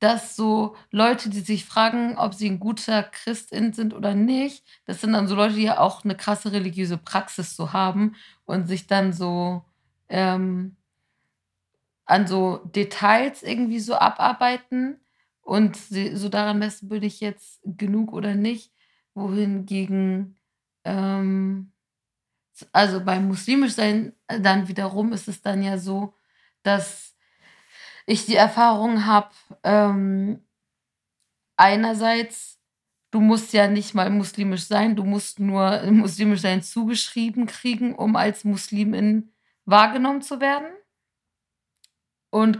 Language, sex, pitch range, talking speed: German, female, 195-220 Hz, 125 wpm